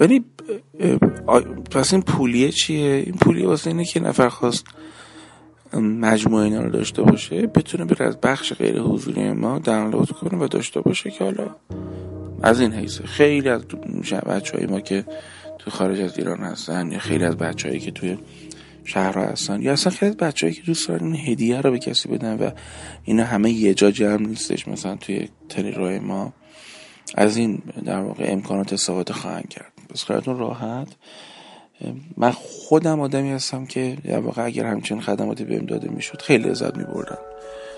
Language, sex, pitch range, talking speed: Persian, male, 105-145 Hz, 155 wpm